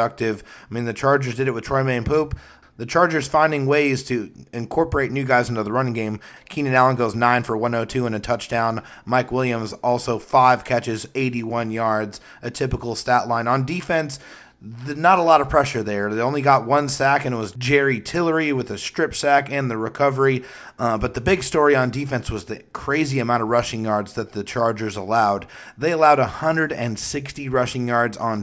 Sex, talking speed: male, 190 wpm